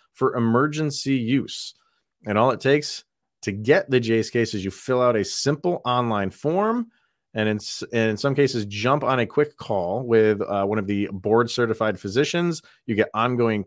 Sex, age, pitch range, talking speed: male, 30-49, 100-130 Hz, 175 wpm